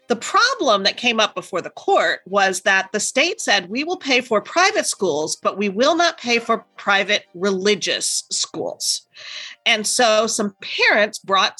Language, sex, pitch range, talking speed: English, female, 185-235 Hz, 170 wpm